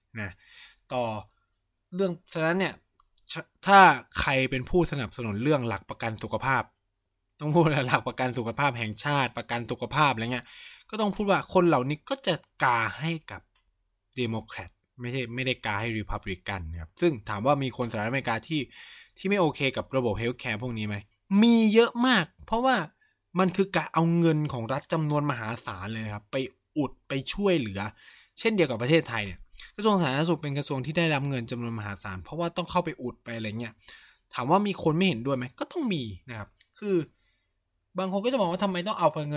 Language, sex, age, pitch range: Thai, male, 20-39, 110-170 Hz